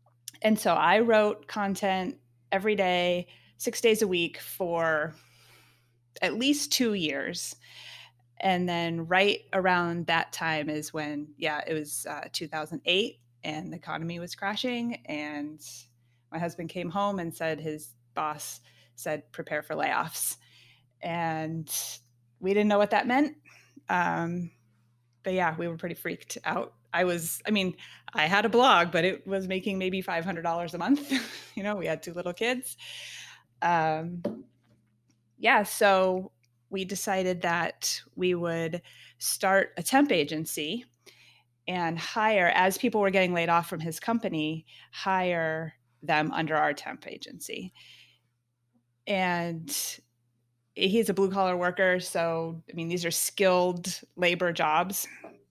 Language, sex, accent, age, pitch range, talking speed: English, female, American, 20-39, 150-190 Hz, 140 wpm